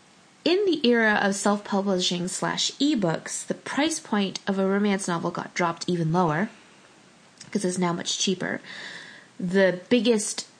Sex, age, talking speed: female, 20-39, 140 wpm